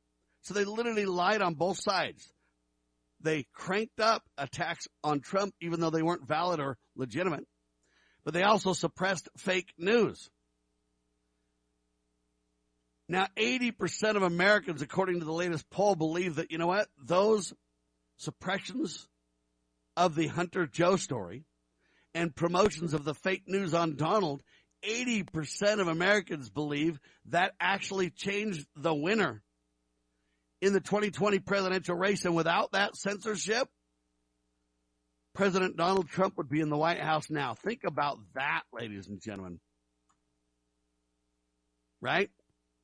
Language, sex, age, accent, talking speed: English, male, 60-79, American, 125 wpm